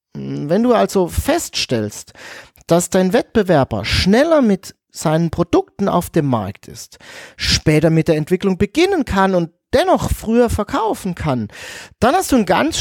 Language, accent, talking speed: German, German, 145 wpm